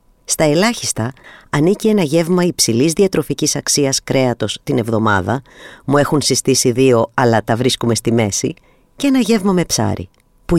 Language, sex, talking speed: Greek, female, 145 wpm